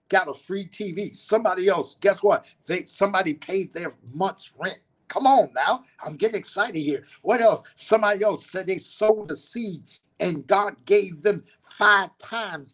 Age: 50-69